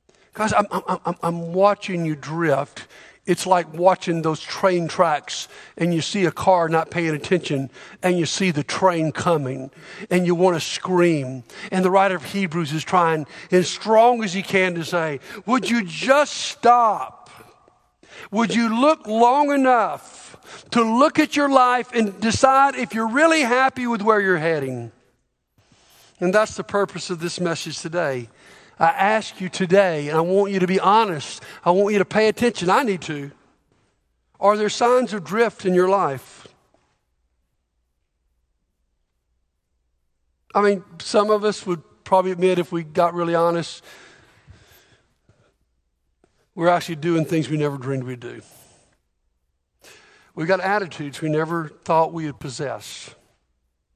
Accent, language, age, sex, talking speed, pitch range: American, English, 50-69, male, 150 wpm, 150-205 Hz